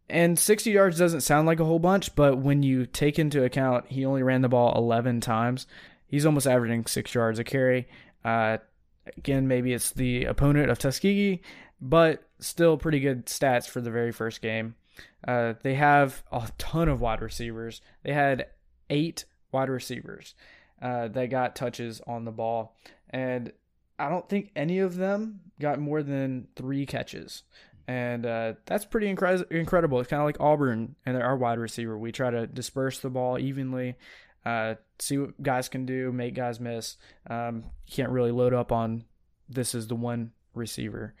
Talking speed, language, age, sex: 180 wpm, English, 20-39, male